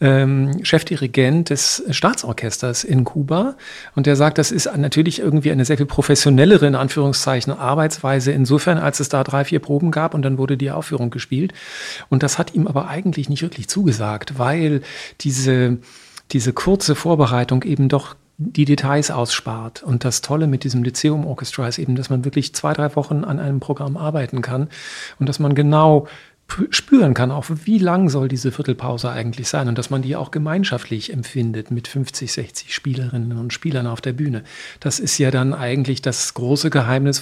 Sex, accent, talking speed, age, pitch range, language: male, German, 175 wpm, 40-59, 130-150 Hz, German